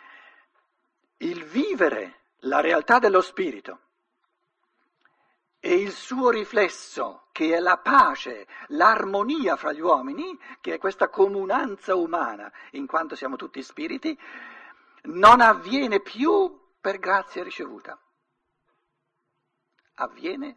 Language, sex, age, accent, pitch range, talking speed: Italian, male, 50-69, native, 210-335 Hz, 100 wpm